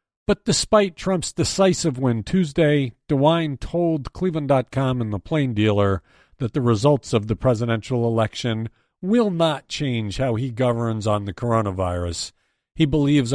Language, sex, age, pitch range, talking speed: English, male, 50-69, 105-150 Hz, 140 wpm